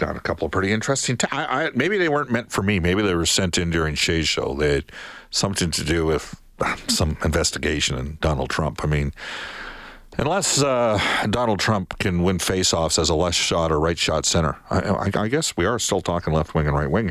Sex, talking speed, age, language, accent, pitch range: male, 210 wpm, 50-69, English, American, 85-110 Hz